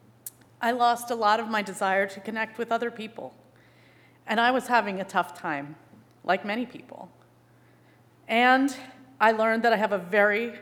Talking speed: 170 wpm